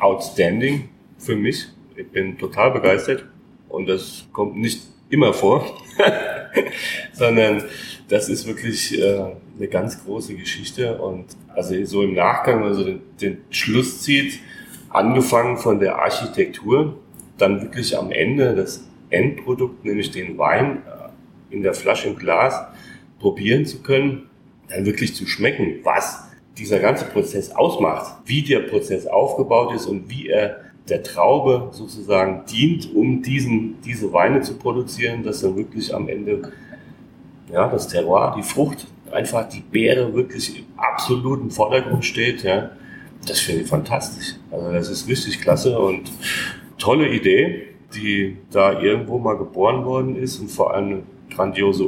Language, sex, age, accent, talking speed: German, male, 30-49, German, 140 wpm